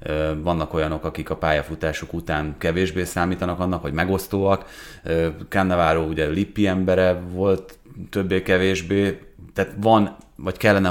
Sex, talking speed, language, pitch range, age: male, 115 wpm, Hungarian, 80-95 Hz, 30-49